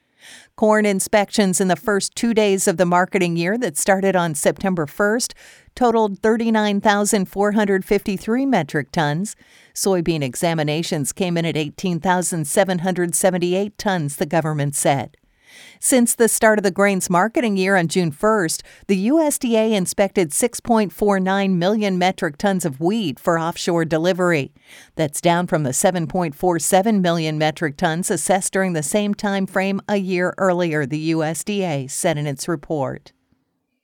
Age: 50-69